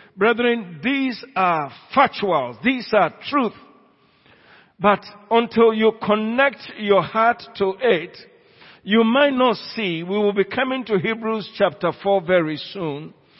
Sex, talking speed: male, 130 wpm